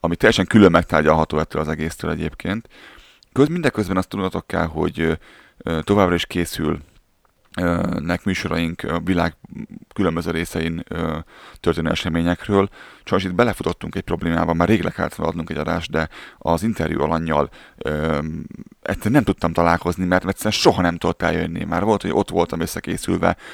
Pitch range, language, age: 80-95 Hz, Hungarian, 30-49